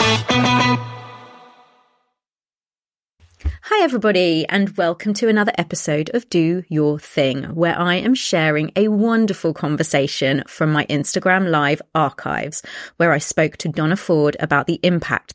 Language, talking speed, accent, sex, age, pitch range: English, 125 wpm, British, female, 30-49, 150-200 Hz